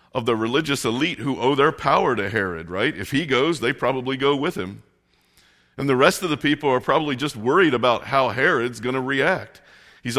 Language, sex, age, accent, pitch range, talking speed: English, male, 50-69, American, 110-140 Hz, 210 wpm